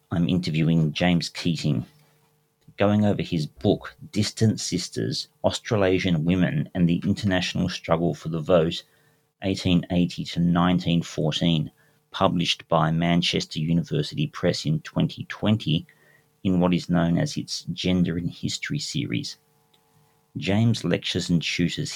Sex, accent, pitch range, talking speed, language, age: male, Australian, 85-105 Hz, 110 wpm, English, 40-59